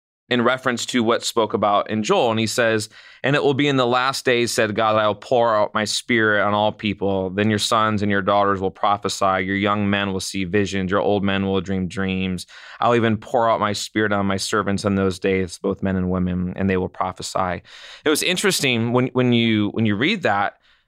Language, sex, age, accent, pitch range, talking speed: English, male, 20-39, American, 100-130 Hz, 225 wpm